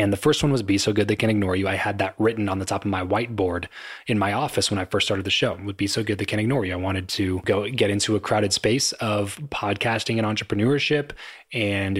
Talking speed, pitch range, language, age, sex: 270 wpm, 100-125 Hz, English, 20-39, male